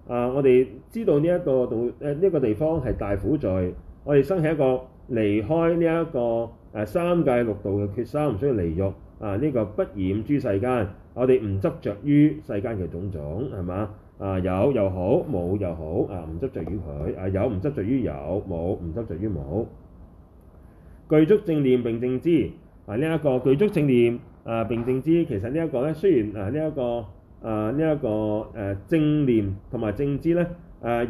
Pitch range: 95-145 Hz